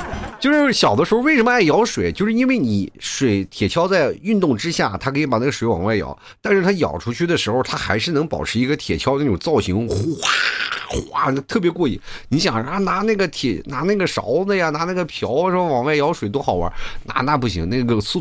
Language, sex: Chinese, male